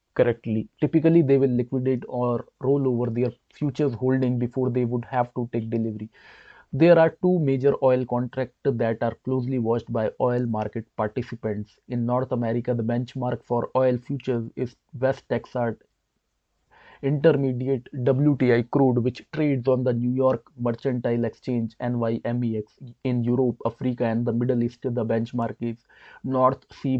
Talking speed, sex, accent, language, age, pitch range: 145 wpm, male, Indian, English, 20-39, 115-130 Hz